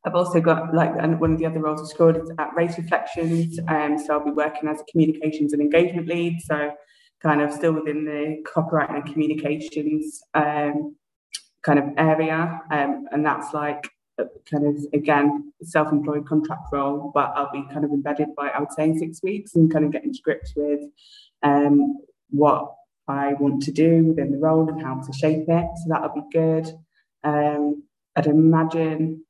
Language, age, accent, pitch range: English, 20-39, British, 150-165 Hz